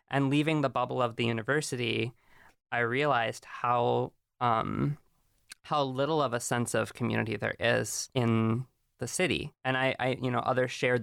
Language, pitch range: English, 115-130 Hz